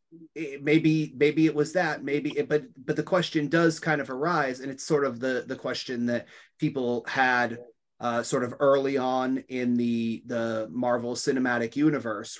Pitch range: 120-150 Hz